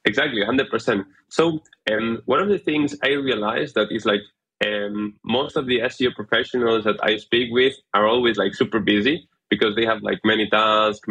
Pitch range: 115-140 Hz